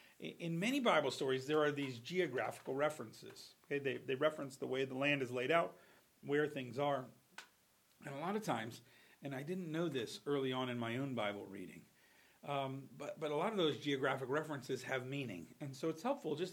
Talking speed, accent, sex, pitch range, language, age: 205 wpm, American, male, 125-155 Hz, English, 40-59